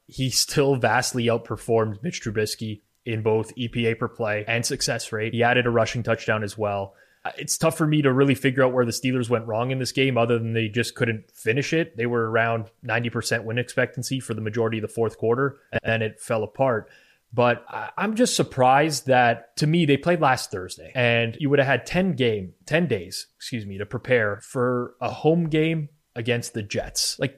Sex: male